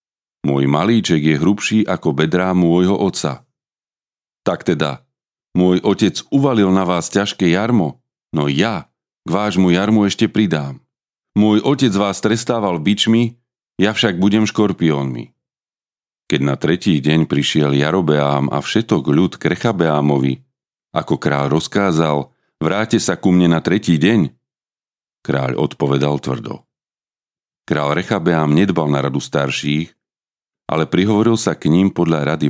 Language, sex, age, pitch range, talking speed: Slovak, male, 40-59, 75-100 Hz, 130 wpm